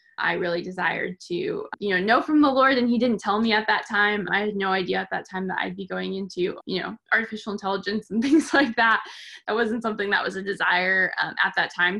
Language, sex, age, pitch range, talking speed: English, female, 10-29, 185-225 Hz, 245 wpm